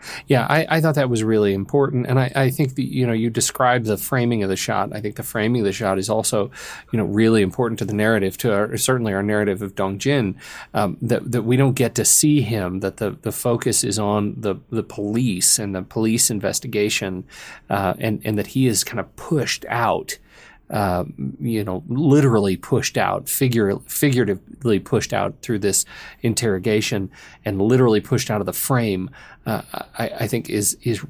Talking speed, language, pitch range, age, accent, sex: 200 wpm, English, 105-130 Hz, 30-49, American, male